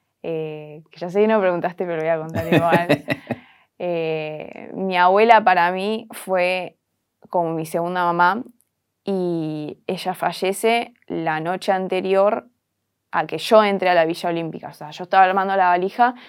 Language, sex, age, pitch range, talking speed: Spanish, female, 20-39, 170-200 Hz, 165 wpm